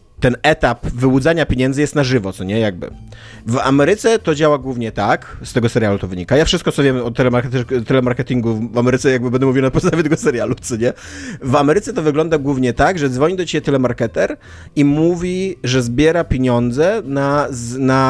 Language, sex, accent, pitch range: Polish, male, native, 120-145 Hz